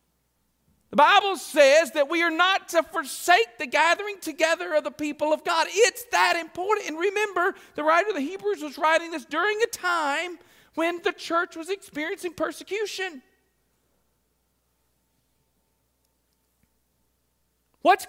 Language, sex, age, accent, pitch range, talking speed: English, male, 40-59, American, 235-385 Hz, 135 wpm